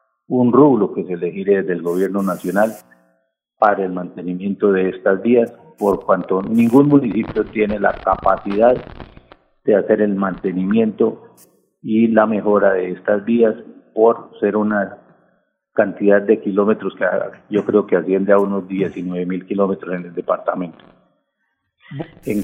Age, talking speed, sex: 50-69, 140 wpm, male